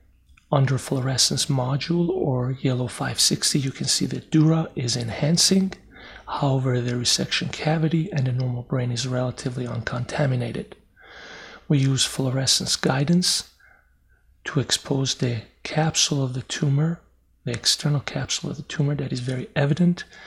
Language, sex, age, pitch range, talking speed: English, male, 40-59, 125-150 Hz, 135 wpm